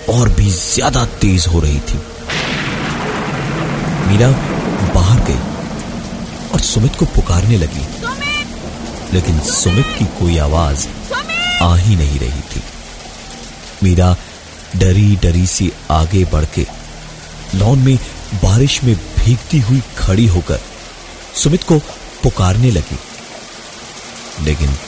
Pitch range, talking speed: 75-105 Hz, 110 wpm